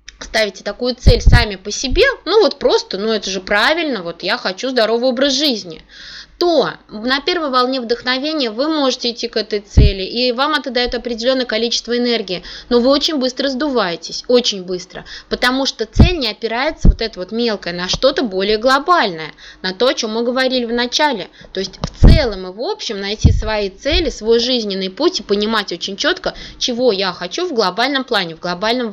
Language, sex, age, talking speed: Russian, female, 20-39, 185 wpm